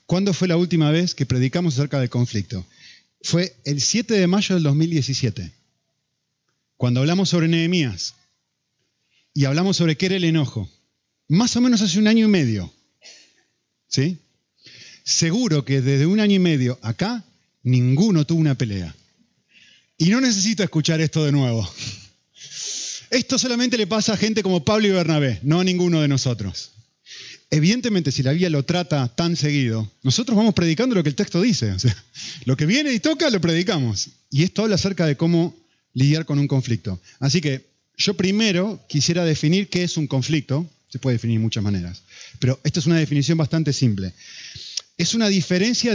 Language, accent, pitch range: Spanish, Argentinian, 135-190 Hz